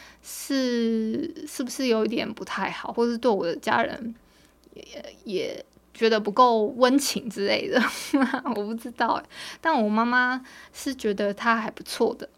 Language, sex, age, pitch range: Chinese, female, 20-39, 220-260 Hz